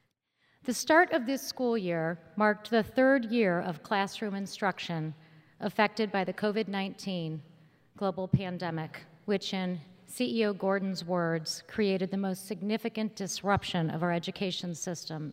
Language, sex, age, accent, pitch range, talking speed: English, female, 40-59, American, 165-210 Hz, 130 wpm